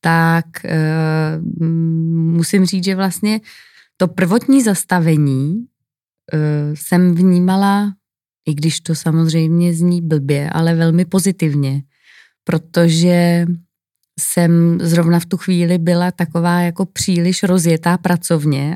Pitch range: 165-180 Hz